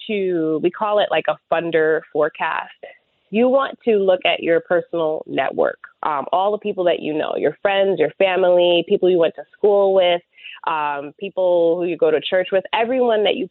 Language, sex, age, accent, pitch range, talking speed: English, female, 20-39, American, 165-210 Hz, 195 wpm